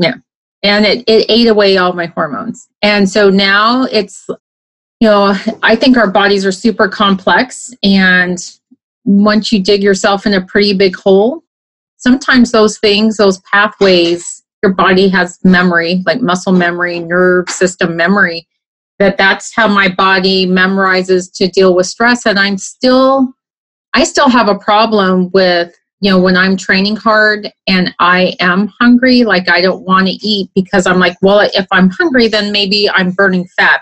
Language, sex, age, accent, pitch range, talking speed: English, female, 30-49, American, 185-215 Hz, 165 wpm